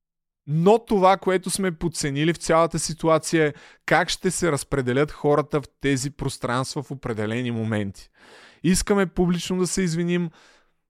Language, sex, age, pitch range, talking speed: Bulgarian, male, 20-39, 140-175 Hz, 140 wpm